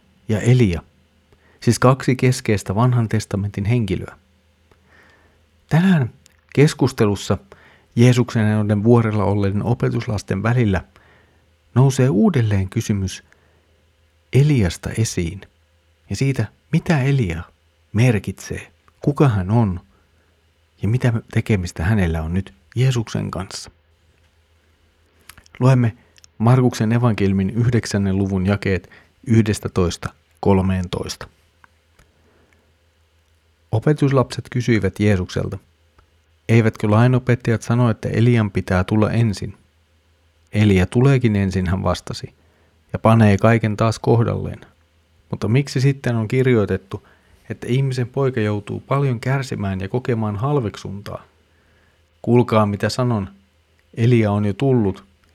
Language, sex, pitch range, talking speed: Finnish, male, 85-120 Hz, 95 wpm